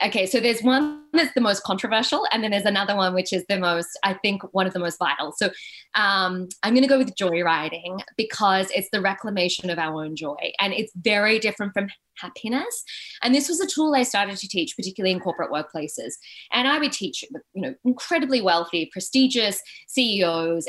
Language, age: English, 20-39